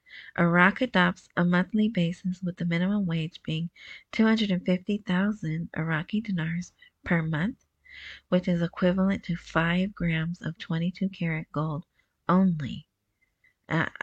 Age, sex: 30-49, female